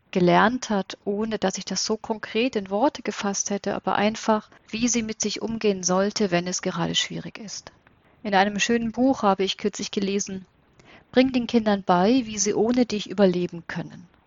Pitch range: 180-215 Hz